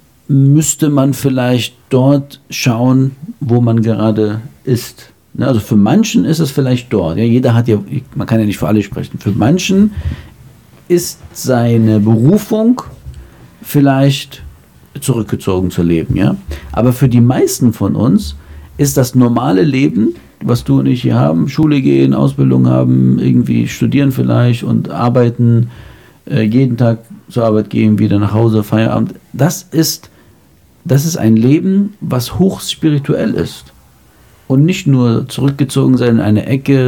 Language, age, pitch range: German, 50-69, 105-140 Hz